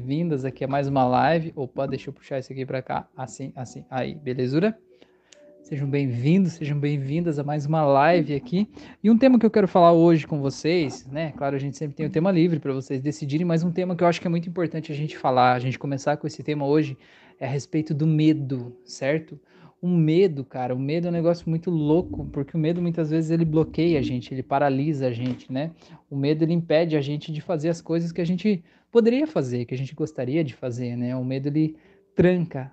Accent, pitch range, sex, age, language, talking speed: Brazilian, 140-170 Hz, male, 20-39, Portuguese, 230 wpm